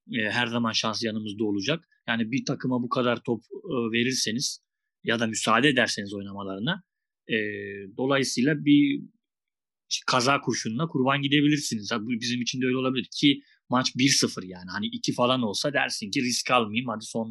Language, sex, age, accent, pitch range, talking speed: Turkish, male, 30-49, native, 110-130 Hz, 145 wpm